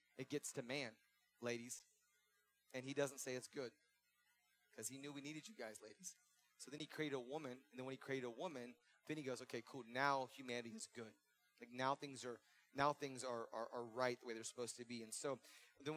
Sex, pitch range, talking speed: male, 115-140 Hz, 225 wpm